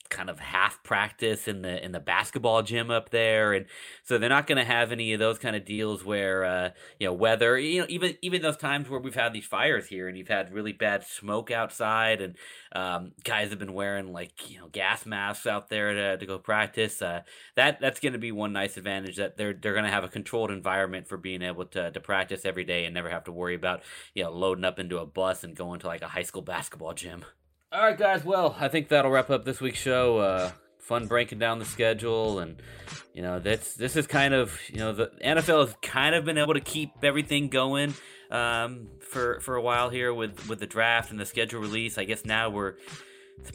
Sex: male